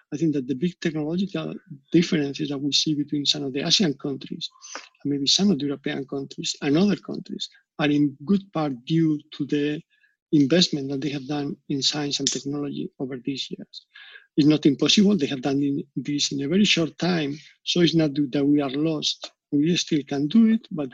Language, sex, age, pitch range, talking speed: English, male, 50-69, 140-165 Hz, 200 wpm